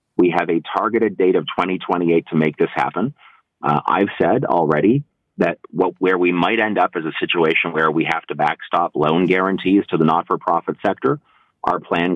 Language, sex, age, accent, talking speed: English, male, 30-49, American, 185 wpm